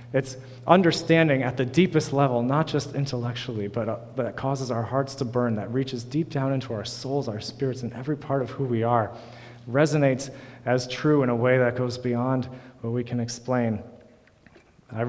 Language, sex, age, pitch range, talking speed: English, male, 30-49, 115-140 Hz, 185 wpm